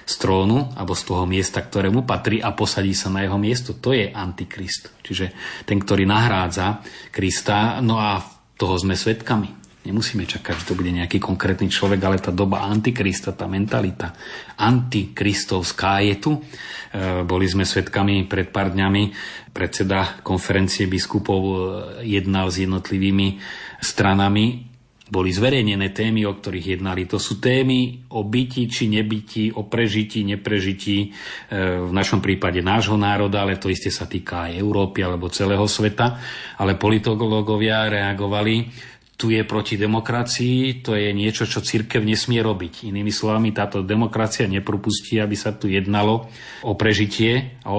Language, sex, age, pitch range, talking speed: Slovak, male, 30-49, 95-115 Hz, 145 wpm